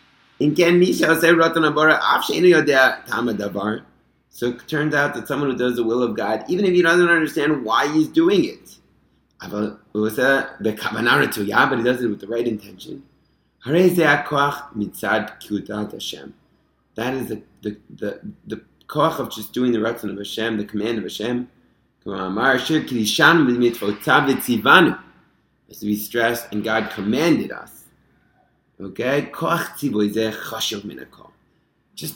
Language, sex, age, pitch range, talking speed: English, male, 30-49, 105-130 Hz, 100 wpm